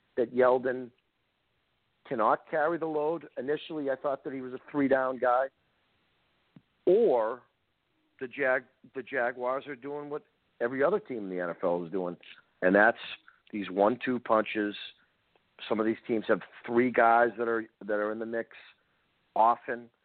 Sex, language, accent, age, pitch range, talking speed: male, English, American, 50-69, 105-135 Hz, 160 wpm